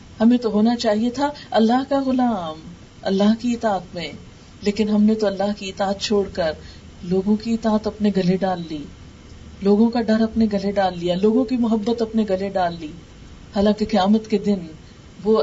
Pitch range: 190-220 Hz